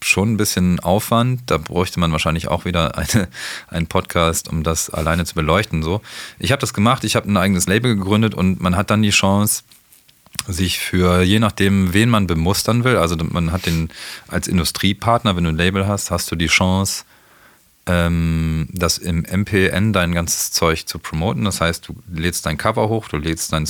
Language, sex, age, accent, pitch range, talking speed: German, male, 40-59, German, 80-100 Hz, 190 wpm